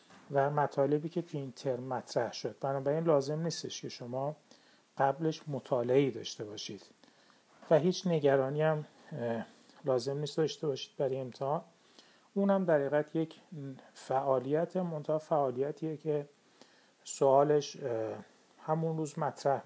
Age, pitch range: 40-59, 130-150 Hz